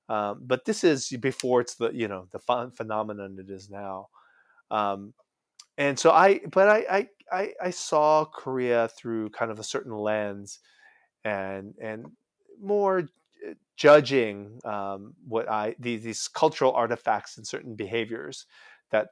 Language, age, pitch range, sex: Korean, 30-49, 110-135 Hz, male